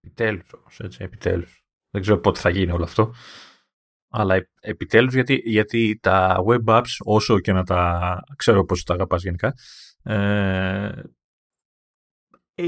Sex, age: male, 30-49